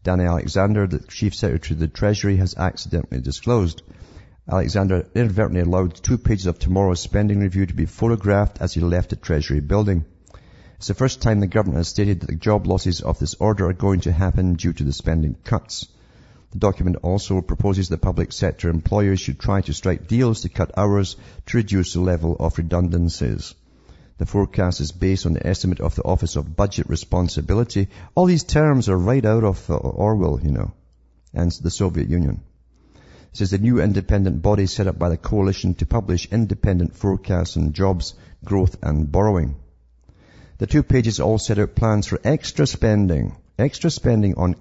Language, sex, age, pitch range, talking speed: English, male, 50-69, 85-105 Hz, 180 wpm